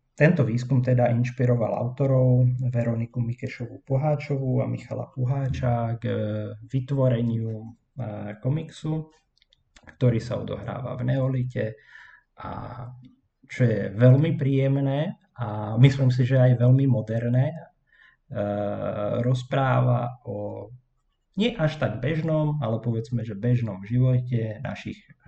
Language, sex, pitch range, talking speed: Slovak, male, 115-135 Hz, 100 wpm